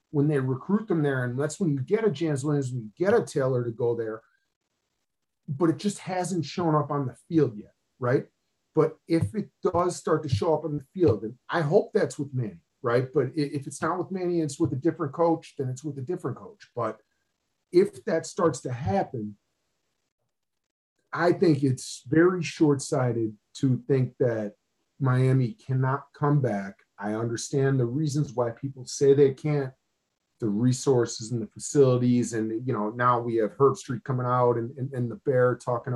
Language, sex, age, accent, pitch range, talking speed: English, male, 40-59, American, 125-155 Hz, 190 wpm